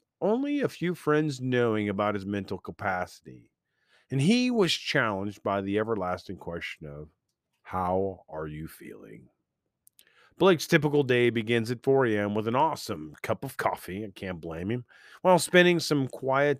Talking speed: 155 wpm